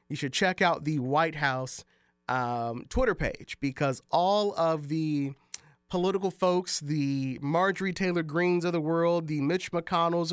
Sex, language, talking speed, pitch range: male, English, 150 wpm, 140-180 Hz